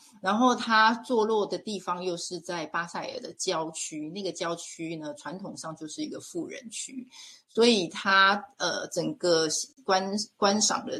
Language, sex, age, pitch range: Chinese, female, 30-49, 170-240 Hz